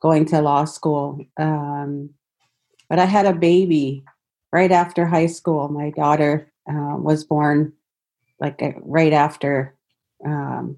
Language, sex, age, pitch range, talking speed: English, female, 40-59, 145-170 Hz, 135 wpm